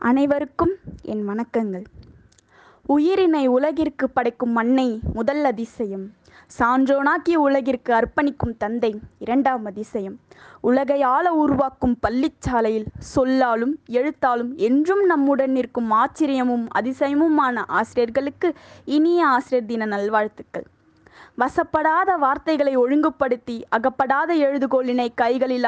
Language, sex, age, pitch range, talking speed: Tamil, female, 20-39, 240-295 Hz, 85 wpm